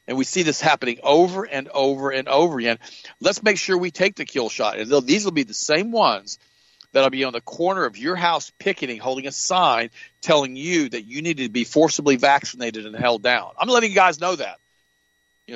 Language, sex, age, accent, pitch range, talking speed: English, male, 50-69, American, 115-150 Hz, 225 wpm